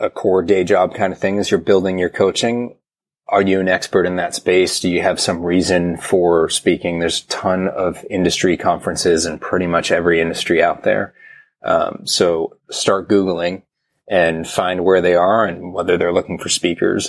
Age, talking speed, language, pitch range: 30-49, 190 wpm, English, 90-120 Hz